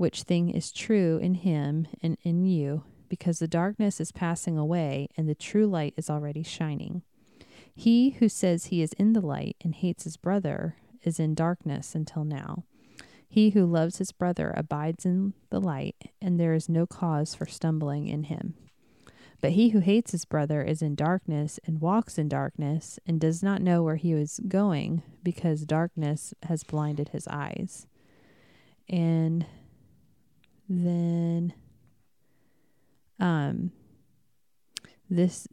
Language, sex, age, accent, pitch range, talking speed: English, female, 30-49, American, 155-185 Hz, 150 wpm